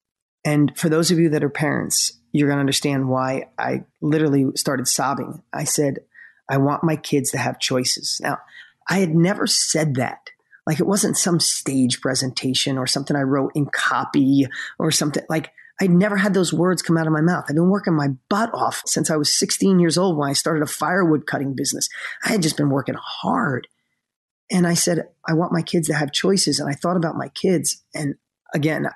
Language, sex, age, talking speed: English, male, 30-49, 210 wpm